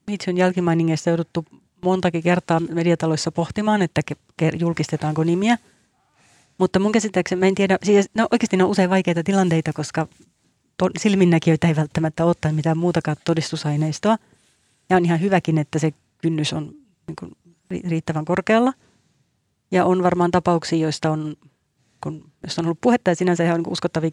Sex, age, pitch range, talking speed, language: female, 30-49, 155-185 Hz, 155 wpm, Finnish